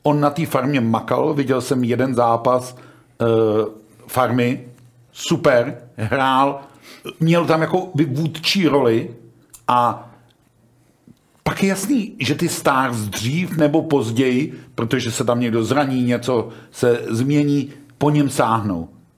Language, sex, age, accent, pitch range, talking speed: Czech, male, 50-69, native, 120-145 Hz, 120 wpm